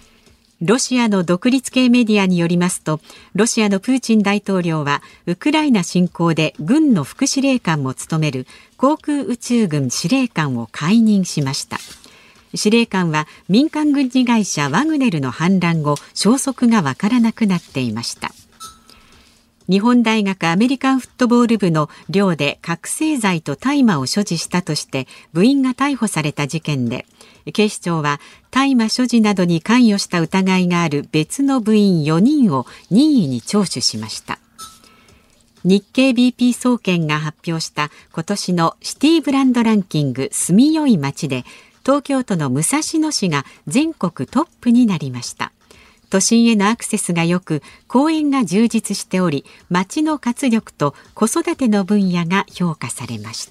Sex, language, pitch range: female, Japanese, 160-245 Hz